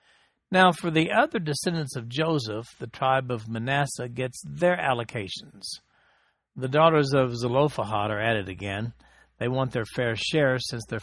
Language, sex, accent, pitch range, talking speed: English, male, American, 115-145 Hz, 150 wpm